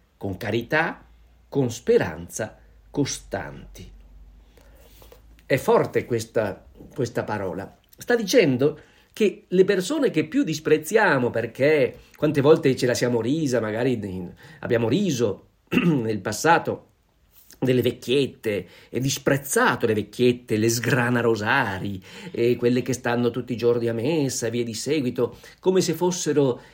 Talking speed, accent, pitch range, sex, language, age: 120 wpm, native, 110-155 Hz, male, Italian, 50-69